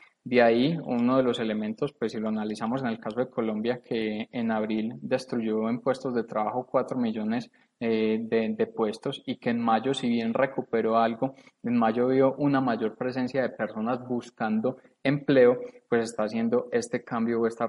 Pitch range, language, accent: 110-125 Hz, Spanish, Colombian